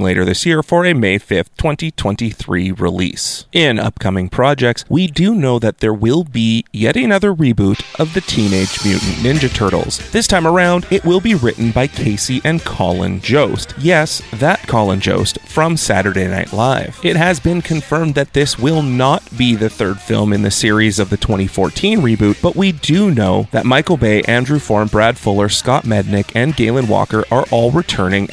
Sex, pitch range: male, 100-145 Hz